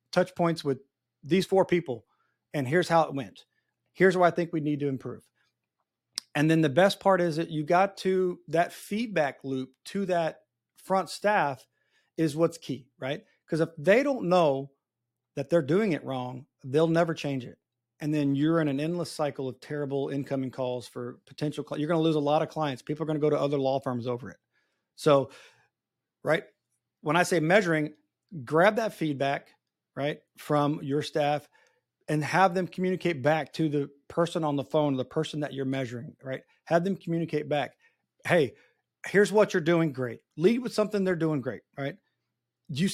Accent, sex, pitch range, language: American, male, 140-175 Hz, English